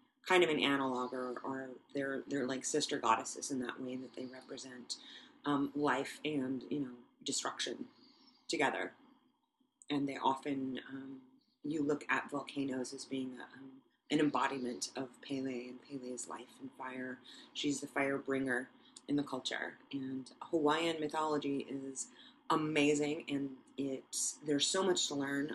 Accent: American